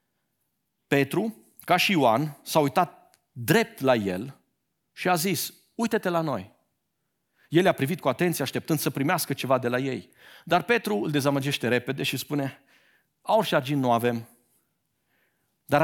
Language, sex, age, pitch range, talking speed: Romanian, male, 50-69, 140-215 Hz, 150 wpm